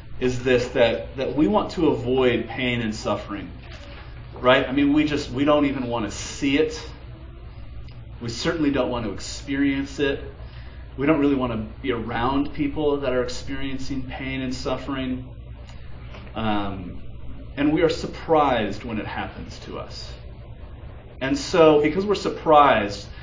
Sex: male